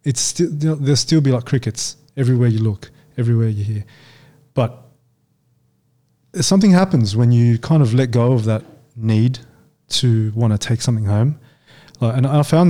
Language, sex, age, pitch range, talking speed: English, male, 20-39, 115-145 Hz, 160 wpm